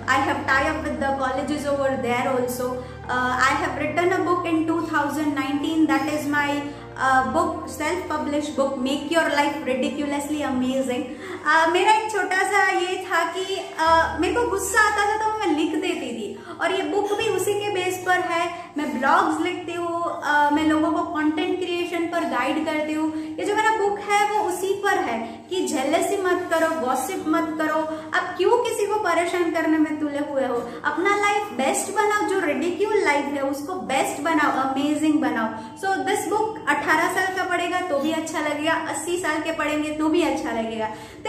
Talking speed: 165 wpm